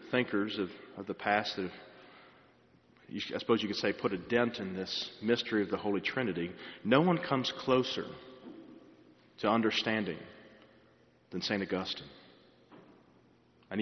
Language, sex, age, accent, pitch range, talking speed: English, male, 40-59, American, 95-120 Hz, 140 wpm